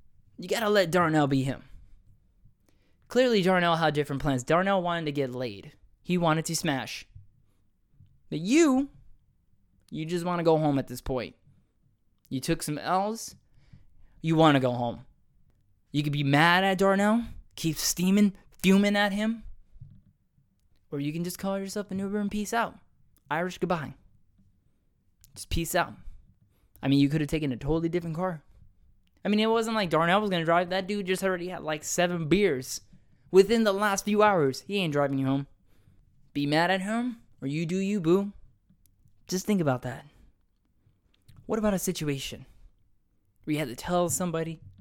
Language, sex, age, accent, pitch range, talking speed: English, male, 20-39, American, 120-185 Hz, 175 wpm